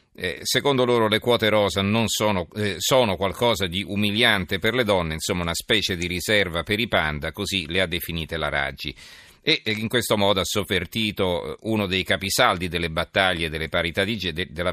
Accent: native